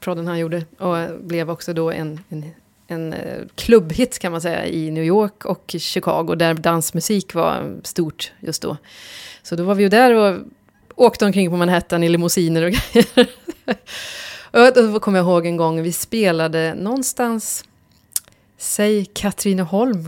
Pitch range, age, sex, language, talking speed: 170-220 Hz, 30-49, female, Swedish, 145 wpm